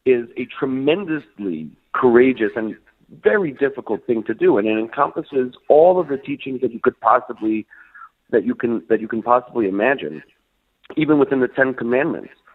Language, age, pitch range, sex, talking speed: English, 40-59, 110-145 Hz, male, 165 wpm